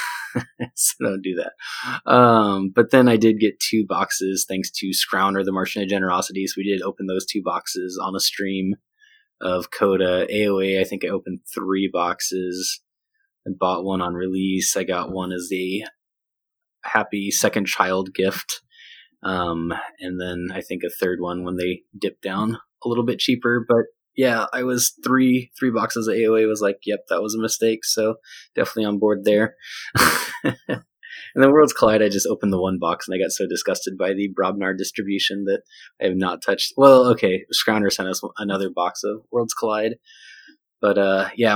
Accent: American